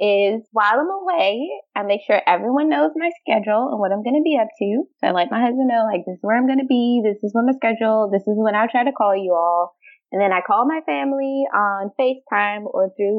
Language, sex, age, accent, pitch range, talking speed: English, female, 20-39, American, 190-265 Hz, 260 wpm